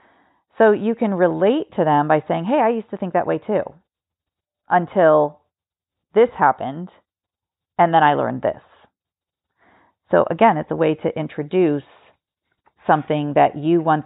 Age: 40-59